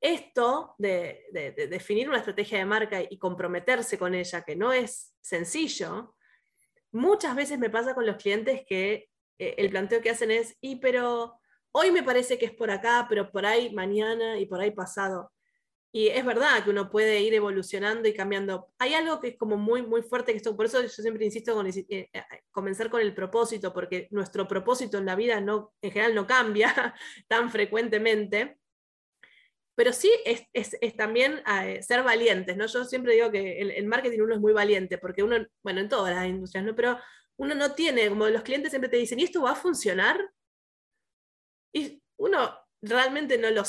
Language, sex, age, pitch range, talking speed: Spanish, female, 20-39, 205-255 Hz, 190 wpm